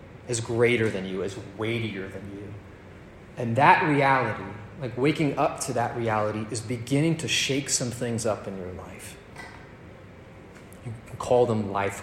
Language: English